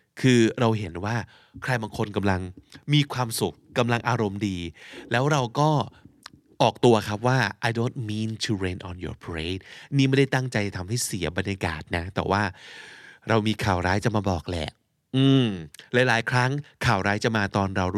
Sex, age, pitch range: male, 20-39, 100-130 Hz